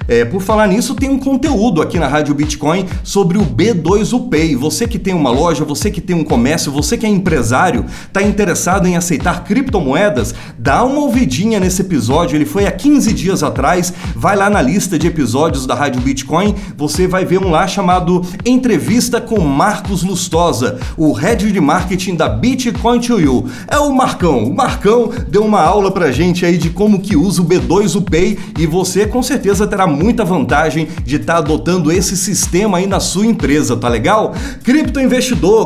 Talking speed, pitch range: 180 wpm, 165-225 Hz